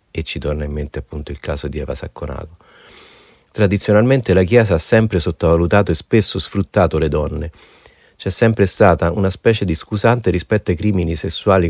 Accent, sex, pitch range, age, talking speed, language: native, male, 80-105 Hz, 40-59, 170 wpm, Italian